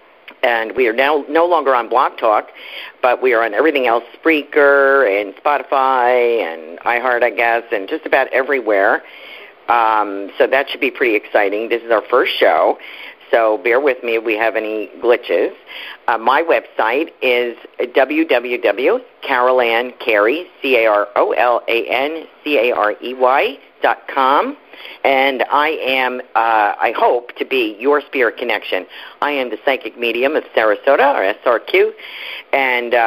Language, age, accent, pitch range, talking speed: English, 50-69, American, 115-155 Hz, 150 wpm